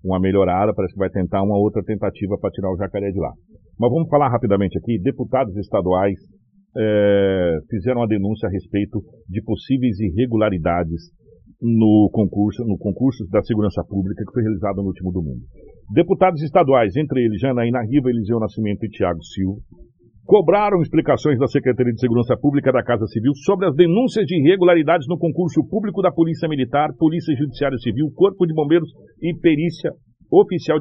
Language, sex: Portuguese, male